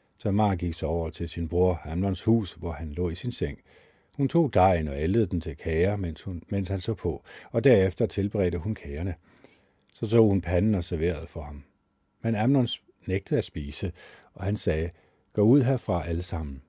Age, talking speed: 50-69, 200 wpm